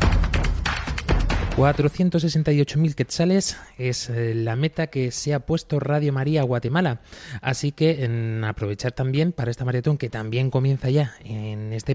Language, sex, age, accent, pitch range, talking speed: Spanish, male, 20-39, Spanish, 110-145 Hz, 130 wpm